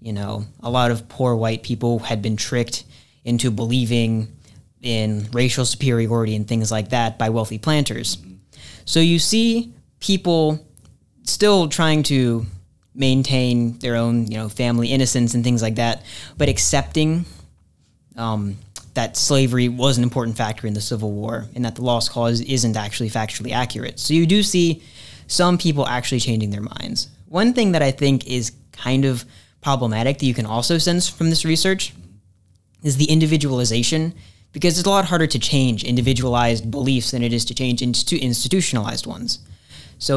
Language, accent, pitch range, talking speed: English, American, 115-140 Hz, 165 wpm